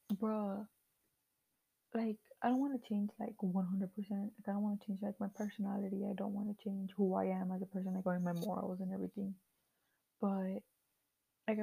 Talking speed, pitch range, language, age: 190 wpm, 195-220 Hz, English, 20-39